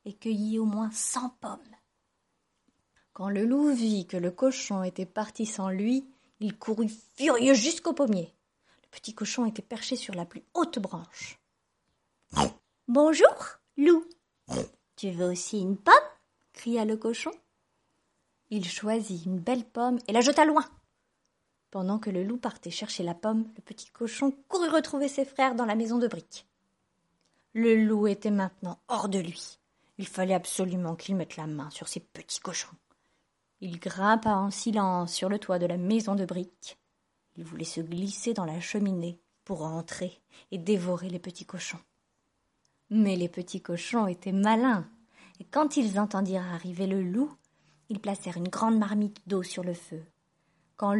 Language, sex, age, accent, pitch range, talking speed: French, female, 20-39, French, 185-235 Hz, 160 wpm